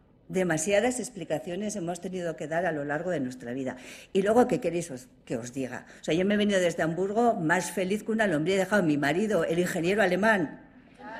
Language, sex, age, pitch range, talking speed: Spanish, female, 50-69, 175-245 Hz, 215 wpm